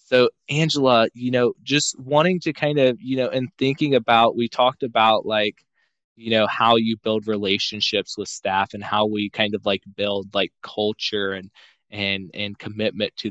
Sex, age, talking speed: male, 20-39, 180 wpm